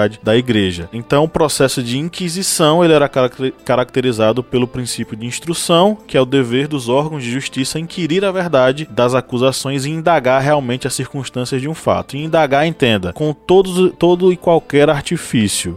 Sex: male